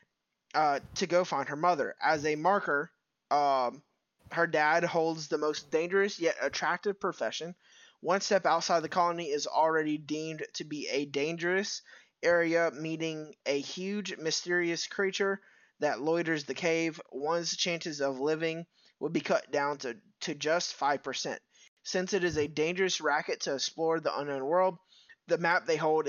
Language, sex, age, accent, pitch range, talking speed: English, male, 20-39, American, 155-195 Hz, 160 wpm